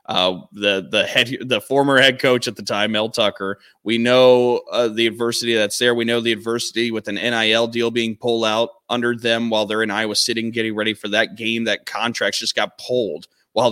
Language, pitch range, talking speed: English, 110-130 Hz, 215 wpm